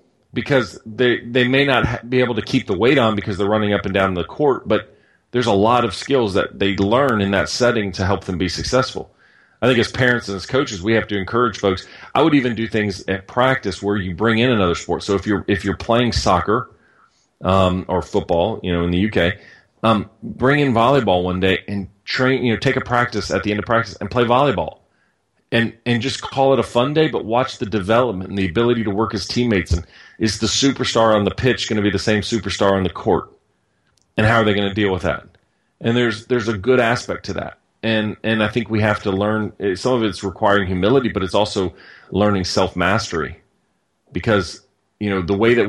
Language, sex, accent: English, male, American